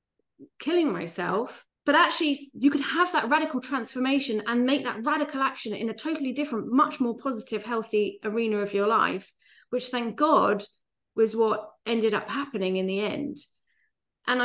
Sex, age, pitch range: female, 30-49, 200-255 Hz